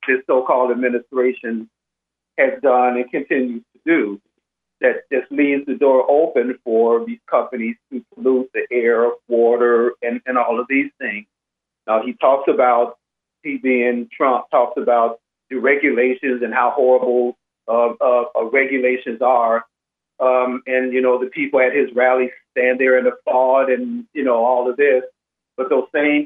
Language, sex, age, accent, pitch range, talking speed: English, male, 50-69, American, 125-150 Hz, 160 wpm